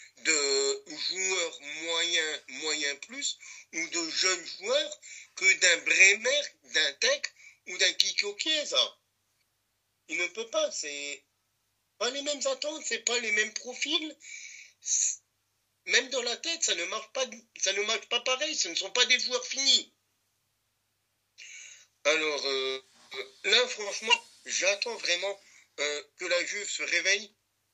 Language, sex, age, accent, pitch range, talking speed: French, male, 50-69, French, 155-255 Hz, 135 wpm